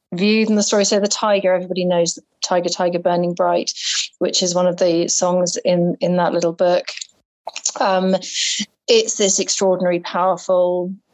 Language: English